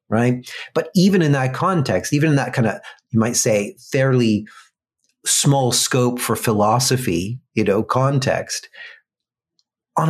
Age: 40-59